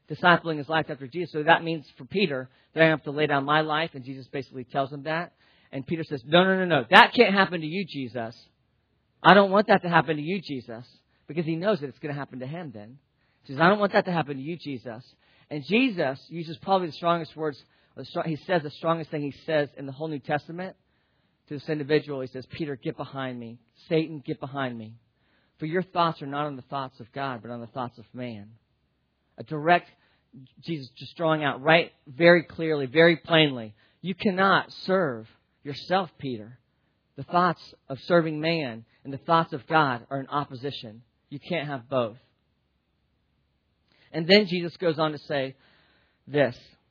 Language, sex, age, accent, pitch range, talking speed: English, male, 40-59, American, 130-170 Hz, 200 wpm